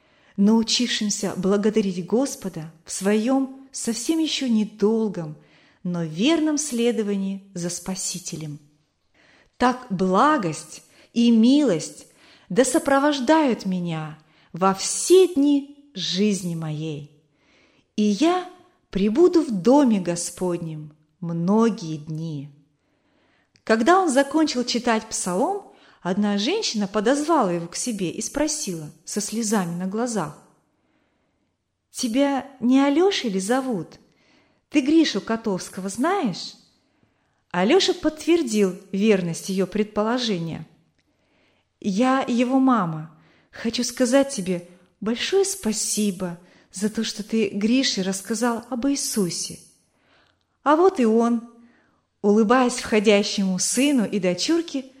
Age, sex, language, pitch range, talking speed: 30-49, female, Russian, 185-265 Hz, 95 wpm